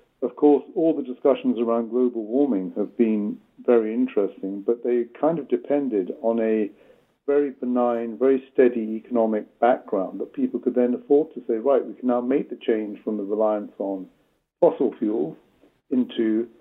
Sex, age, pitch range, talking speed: male, 50-69, 120-160 Hz, 165 wpm